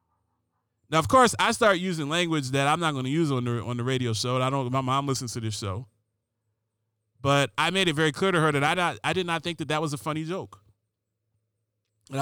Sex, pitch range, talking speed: male, 110-170 Hz, 240 wpm